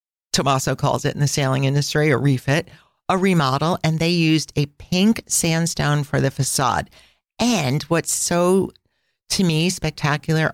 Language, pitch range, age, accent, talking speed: English, 140-165 Hz, 40-59, American, 150 wpm